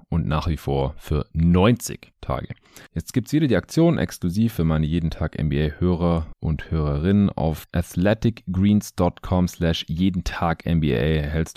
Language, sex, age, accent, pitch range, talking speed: German, male, 30-49, German, 75-95 Hz, 120 wpm